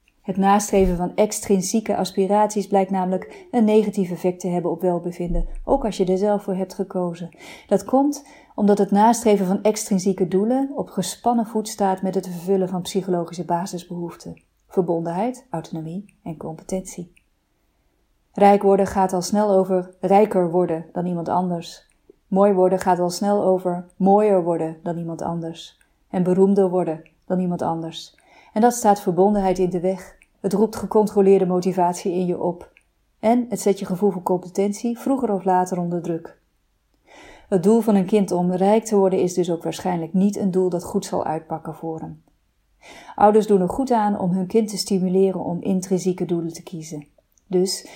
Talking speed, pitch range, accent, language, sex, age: 170 wpm, 180-200 Hz, Dutch, Dutch, female, 30-49